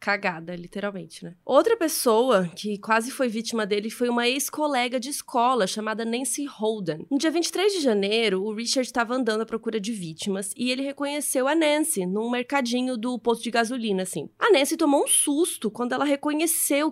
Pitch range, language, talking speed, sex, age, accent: 210-280 Hz, Portuguese, 180 wpm, female, 20-39, Brazilian